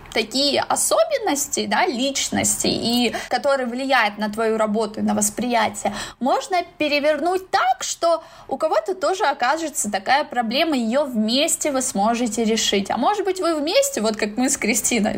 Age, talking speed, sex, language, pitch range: 20-39, 145 wpm, female, Russian, 225-300 Hz